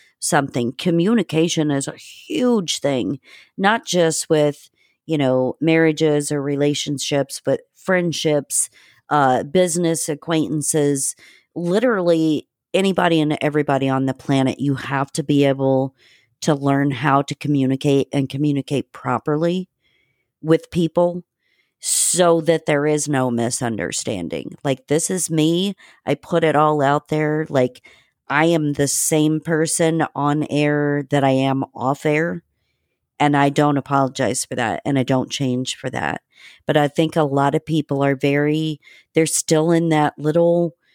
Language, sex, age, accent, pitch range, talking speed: English, female, 40-59, American, 140-160 Hz, 140 wpm